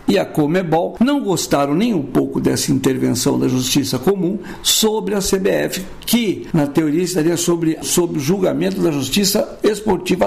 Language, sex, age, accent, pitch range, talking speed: Portuguese, male, 60-79, Brazilian, 150-190 Hz, 150 wpm